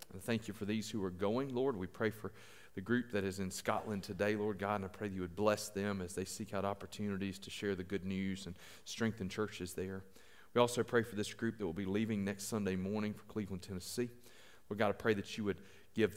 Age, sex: 40-59, male